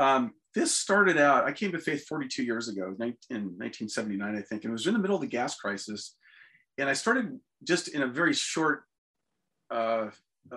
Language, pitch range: English, 115-150 Hz